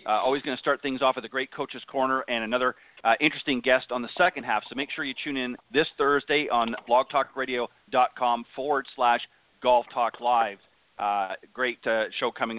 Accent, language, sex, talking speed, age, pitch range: American, English, male, 195 wpm, 40-59, 120-145 Hz